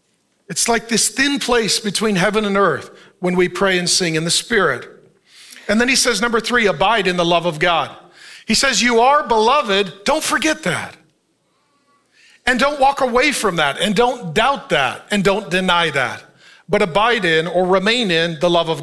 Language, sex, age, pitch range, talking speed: English, male, 40-59, 170-225 Hz, 190 wpm